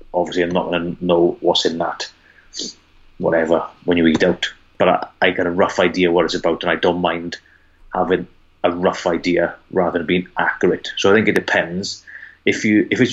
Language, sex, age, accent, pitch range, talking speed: English, male, 30-49, British, 85-90 Hz, 200 wpm